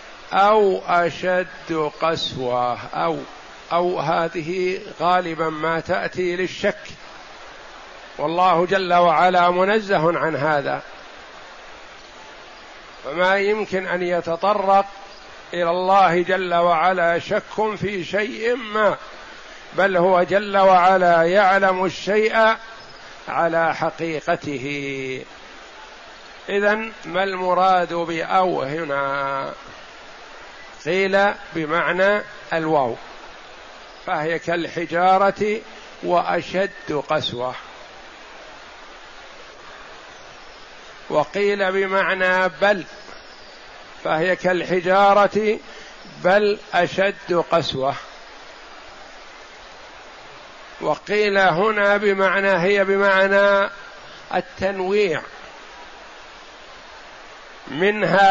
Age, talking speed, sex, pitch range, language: 50-69, 65 wpm, male, 170-200 Hz, Arabic